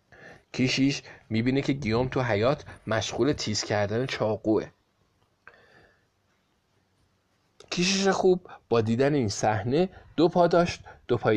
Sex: male